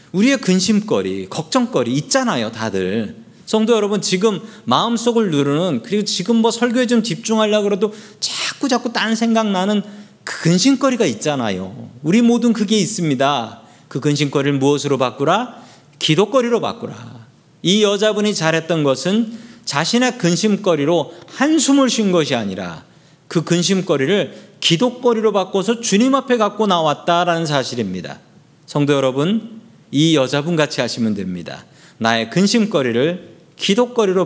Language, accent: Korean, native